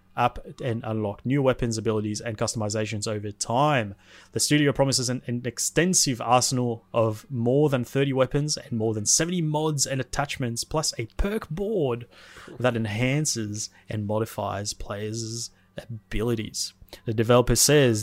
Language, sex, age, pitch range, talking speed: English, male, 20-39, 110-130 Hz, 140 wpm